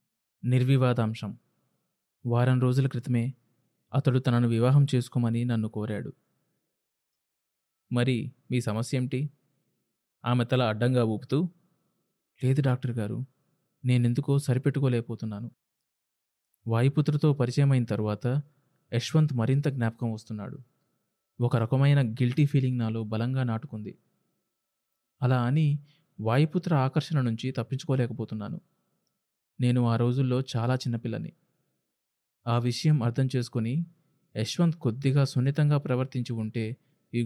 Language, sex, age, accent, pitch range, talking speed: Telugu, male, 20-39, native, 120-145 Hz, 95 wpm